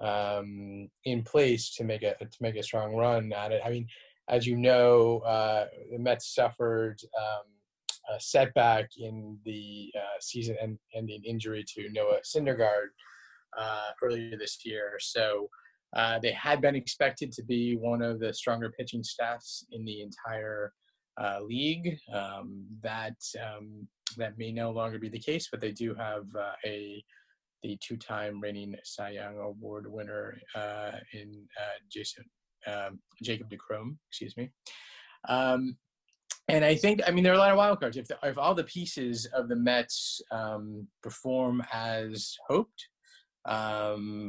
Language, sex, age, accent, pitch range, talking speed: English, male, 20-39, American, 105-120 Hz, 155 wpm